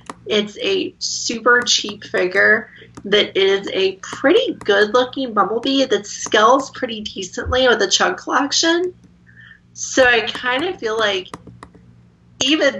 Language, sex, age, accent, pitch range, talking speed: English, female, 30-49, American, 175-225 Hz, 125 wpm